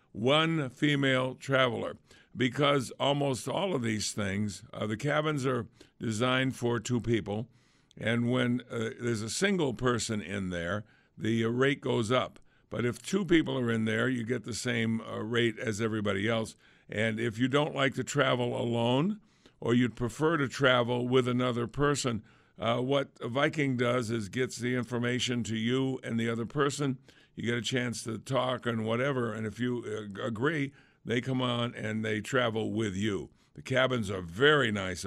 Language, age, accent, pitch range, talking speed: English, 60-79, American, 115-135 Hz, 175 wpm